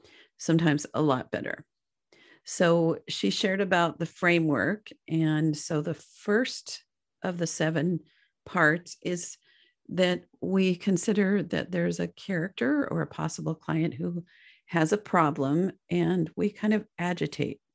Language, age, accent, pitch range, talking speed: English, 50-69, American, 160-210 Hz, 130 wpm